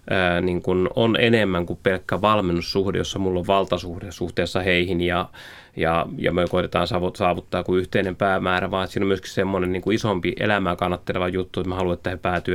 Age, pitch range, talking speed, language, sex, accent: 30-49, 90-100 Hz, 185 wpm, Finnish, male, native